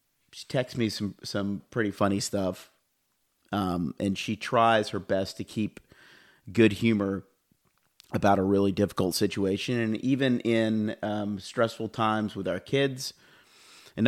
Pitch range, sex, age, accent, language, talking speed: 100-120 Hz, male, 40-59, American, English, 140 wpm